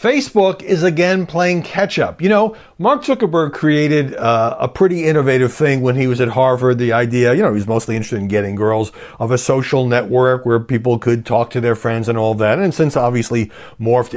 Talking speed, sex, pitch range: 210 wpm, male, 110-140 Hz